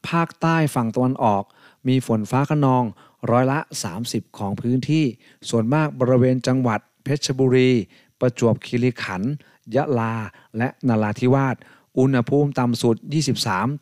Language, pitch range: Thai, 110-135 Hz